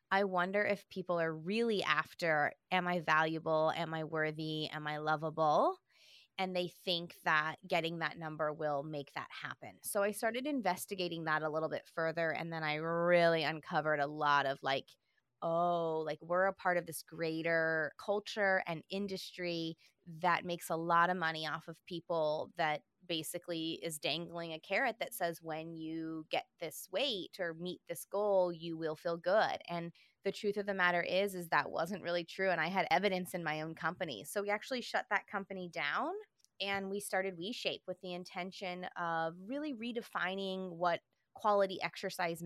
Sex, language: female, English